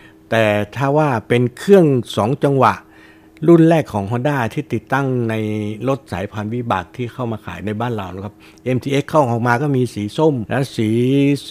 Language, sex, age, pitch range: Thai, male, 60-79, 110-135 Hz